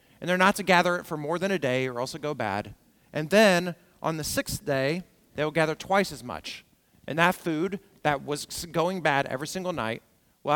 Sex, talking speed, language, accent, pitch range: male, 220 wpm, English, American, 125-185 Hz